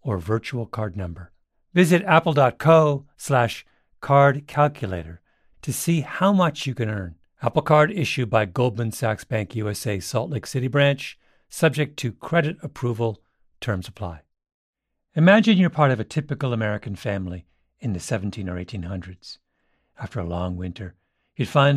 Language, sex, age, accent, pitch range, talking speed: English, male, 50-69, American, 95-150 Hz, 145 wpm